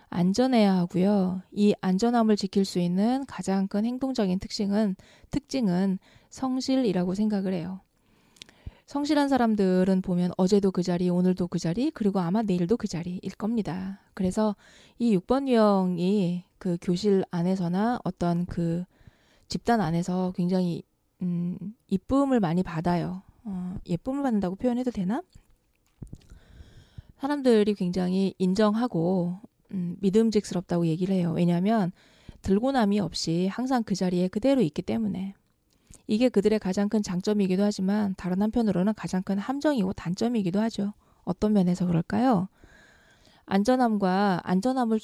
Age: 20-39